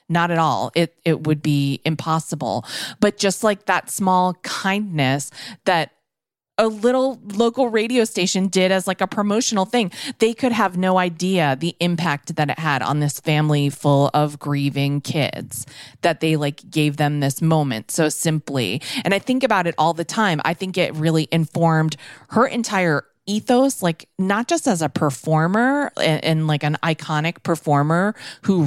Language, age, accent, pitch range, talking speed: English, 30-49, American, 145-190 Hz, 170 wpm